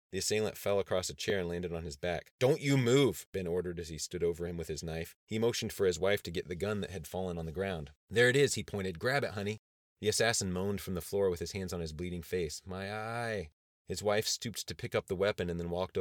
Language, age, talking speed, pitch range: English, 30-49, 275 wpm, 85-100 Hz